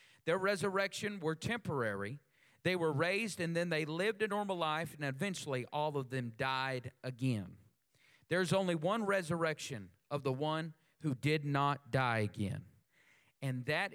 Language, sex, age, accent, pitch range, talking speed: English, male, 40-59, American, 135-180 Hz, 150 wpm